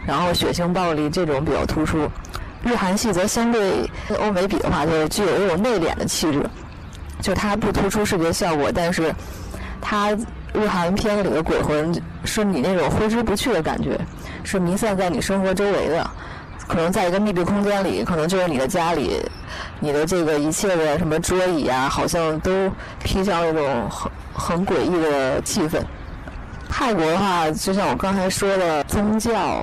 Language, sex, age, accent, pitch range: Chinese, female, 20-39, native, 160-205 Hz